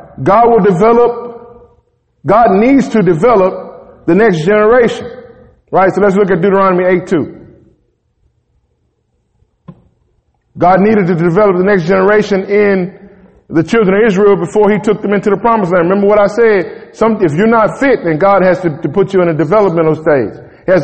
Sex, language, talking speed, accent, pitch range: male, English, 165 wpm, American, 195-230 Hz